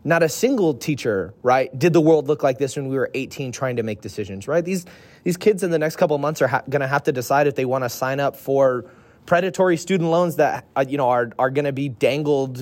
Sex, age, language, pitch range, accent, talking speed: male, 20-39, English, 125-150 Hz, American, 265 wpm